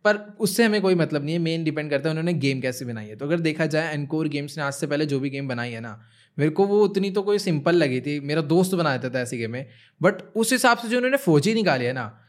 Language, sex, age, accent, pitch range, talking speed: Hindi, male, 20-39, native, 140-185 Hz, 290 wpm